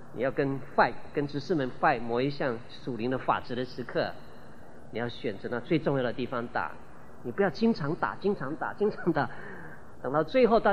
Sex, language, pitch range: male, Chinese, 135-200 Hz